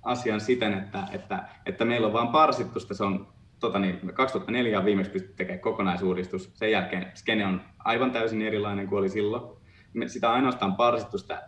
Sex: male